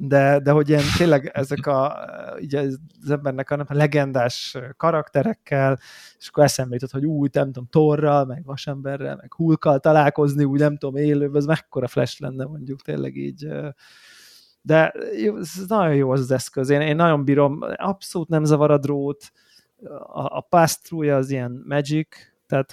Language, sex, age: Hungarian, male, 20-39